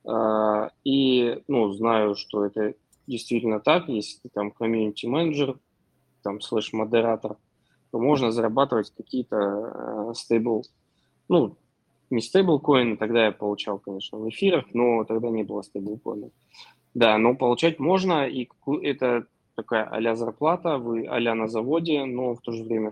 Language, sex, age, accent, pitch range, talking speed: Russian, male, 20-39, native, 110-135 Hz, 145 wpm